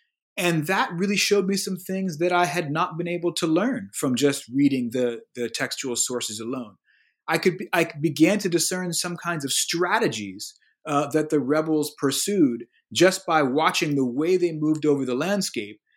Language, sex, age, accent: English, male, 30-49, American